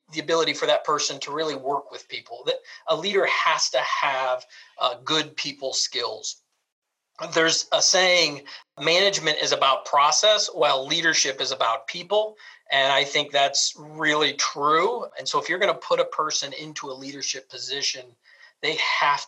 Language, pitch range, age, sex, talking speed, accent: English, 135-175 Hz, 40-59, male, 160 wpm, American